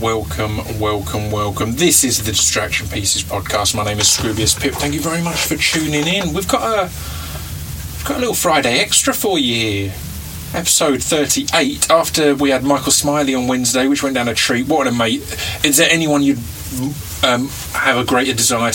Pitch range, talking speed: 95-135 Hz, 180 wpm